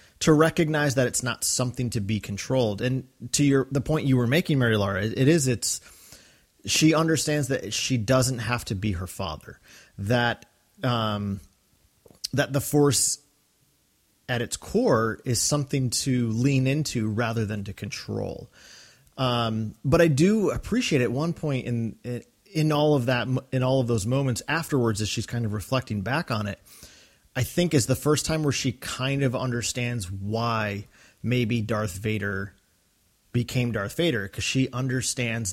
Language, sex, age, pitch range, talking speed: English, male, 30-49, 110-135 Hz, 165 wpm